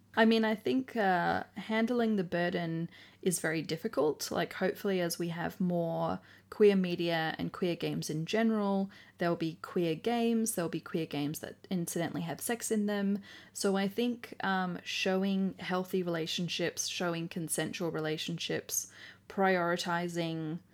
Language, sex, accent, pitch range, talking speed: English, female, Australian, 160-195 Hz, 140 wpm